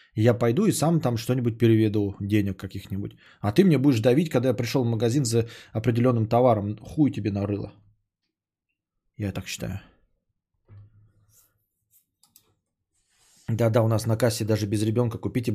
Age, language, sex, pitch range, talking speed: 20-39, Bulgarian, male, 105-135 Hz, 145 wpm